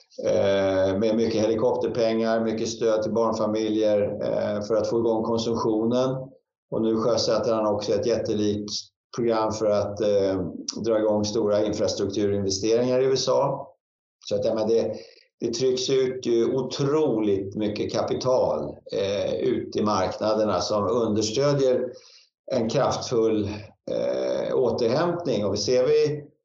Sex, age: male, 50-69